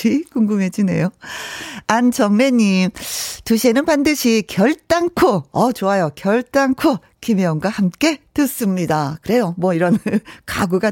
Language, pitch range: Korean, 170-255 Hz